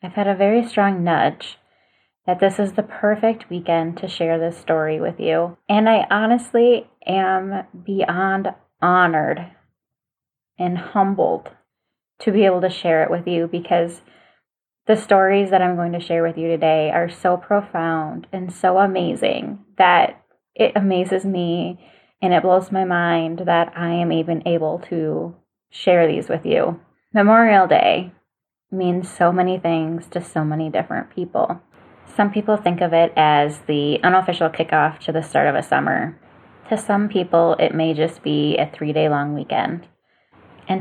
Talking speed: 160 wpm